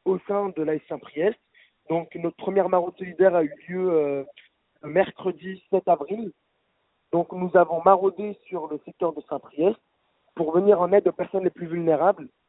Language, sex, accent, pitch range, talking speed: French, male, French, 165-195 Hz, 175 wpm